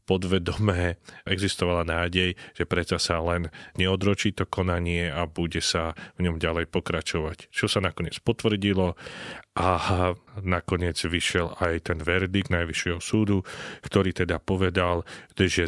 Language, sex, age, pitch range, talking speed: Slovak, male, 40-59, 85-100 Hz, 125 wpm